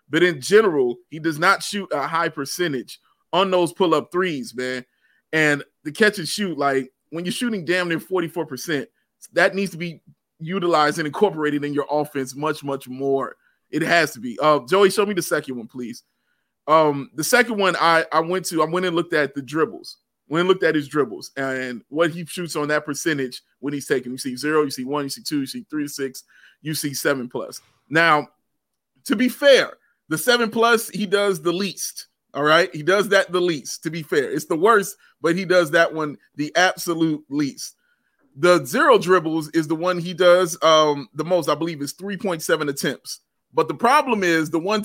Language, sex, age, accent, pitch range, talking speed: English, male, 30-49, American, 155-215 Hz, 205 wpm